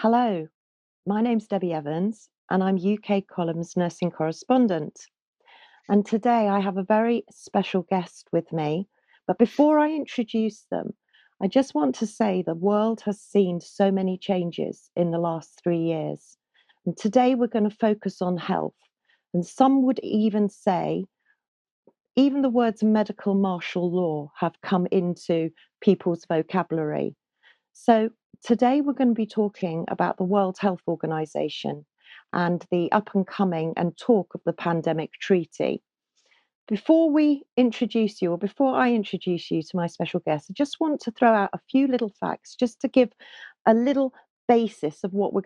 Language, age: English, 40-59